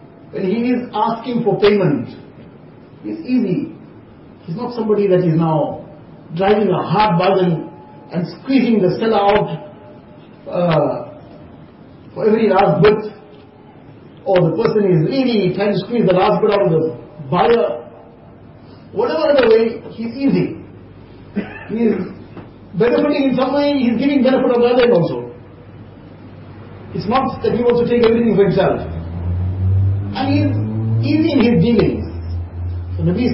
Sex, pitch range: male, 160-230 Hz